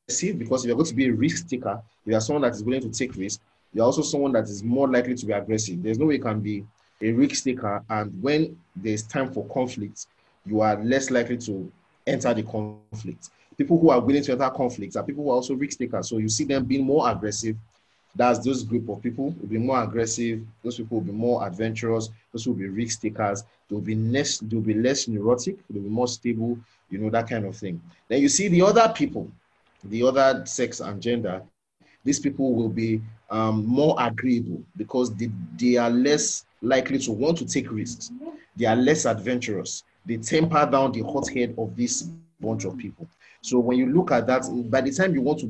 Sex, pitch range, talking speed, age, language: male, 110-135 Hz, 215 wpm, 30-49, English